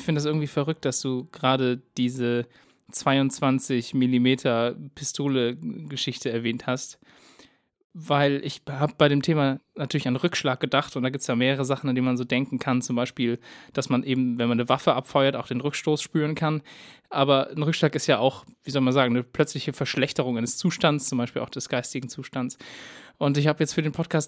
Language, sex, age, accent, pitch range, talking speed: German, male, 20-39, German, 130-155 Hz, 200 wpm